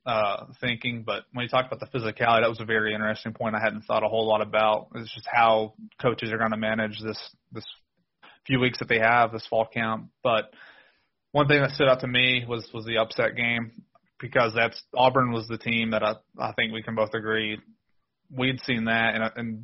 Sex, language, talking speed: male, English, 220 wpm